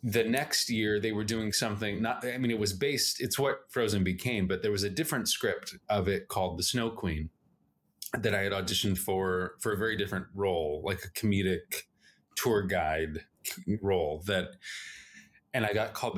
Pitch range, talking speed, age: 95-115 Hz, 185 wpm, 20-39